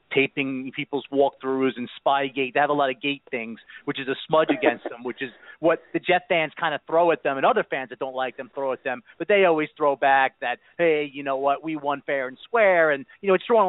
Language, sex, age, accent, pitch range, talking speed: English, male, 40-59, American, 135-165 Hz, 265 wpm